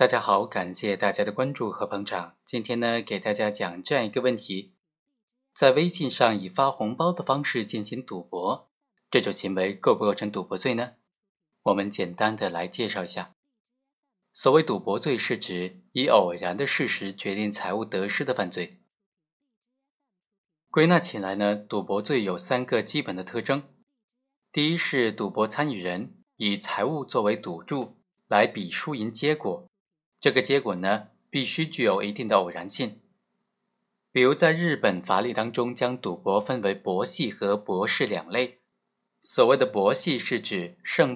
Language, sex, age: Chinese, male, 20-39